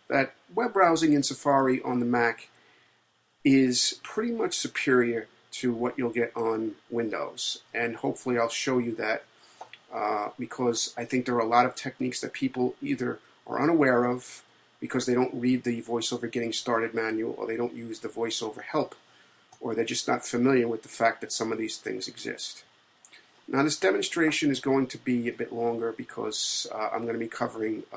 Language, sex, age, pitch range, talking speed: English, male, 40-59, 115-130 Hz, 190 wpm